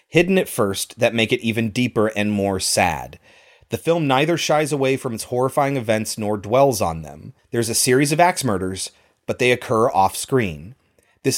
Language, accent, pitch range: English, American, 110-145 Hz